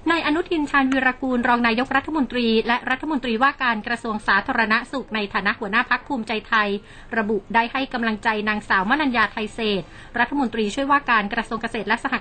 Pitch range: 210-250 Hz